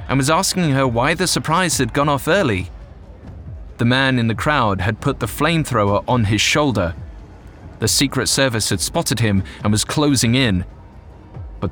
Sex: male